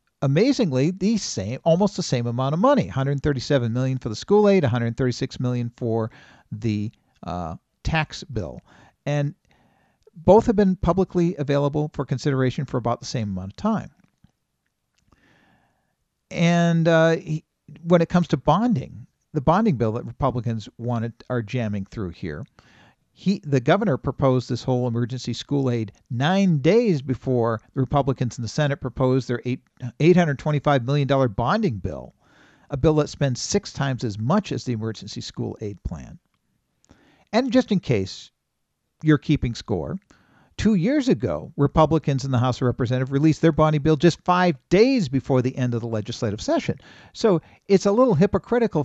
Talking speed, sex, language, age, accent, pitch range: 165 wpm, male, English, 50-69, American, 125-185 Hz